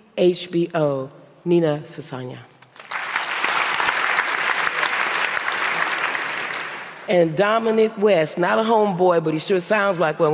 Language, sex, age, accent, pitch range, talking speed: English, female, 40-59, American, 160-195 Hz, 85 wpm